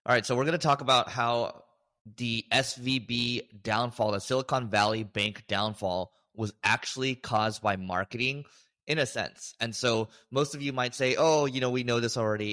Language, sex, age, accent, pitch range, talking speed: English, male, 20-39, American, 100-125 Hz, 185 wpm